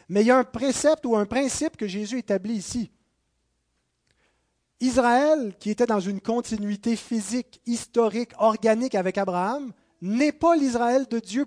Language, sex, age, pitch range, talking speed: French, male, 30-49, 185-255 Hz, 150 wpm